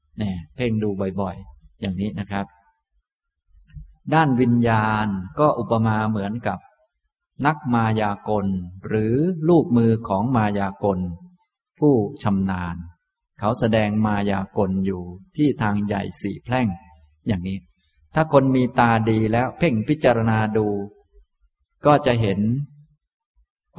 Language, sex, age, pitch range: Thai, male, 20-39, 100-130 Hz